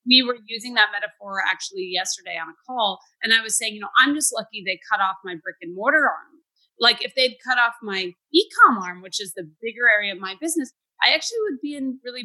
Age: 30-49